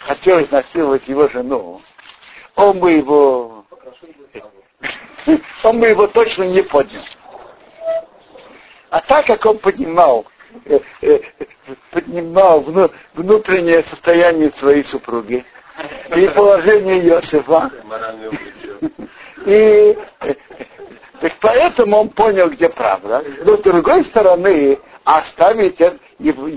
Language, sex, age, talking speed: Russian, male, 60-79, 80 wpm